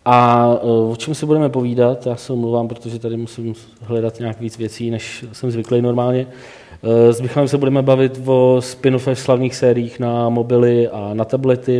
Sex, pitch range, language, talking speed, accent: male, 115-130 Hz, Czech, 180 wpm, native